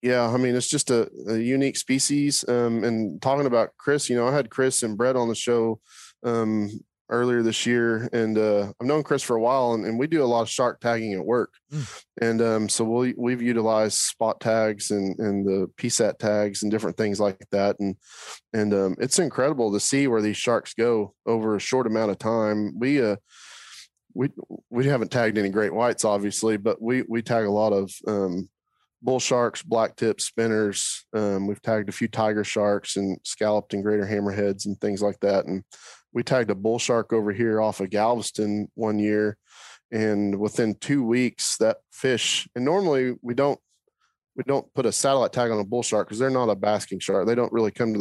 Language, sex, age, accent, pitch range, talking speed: English, male, 20-39, American, 105-120 Hz, 205 wpm